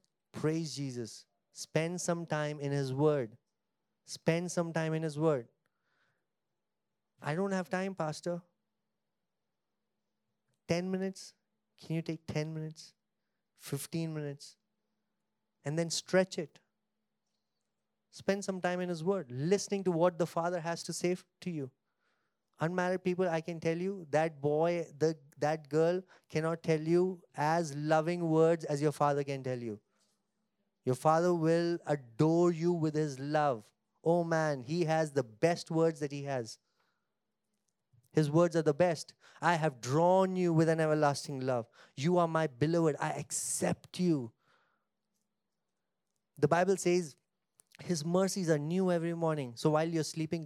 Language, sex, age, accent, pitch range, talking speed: English, male, 30-49, Indian, 145-175 Hz, 145 wpm